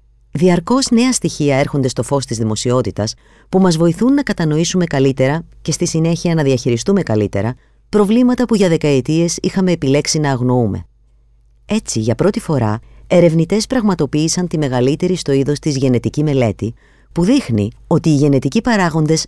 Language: Greek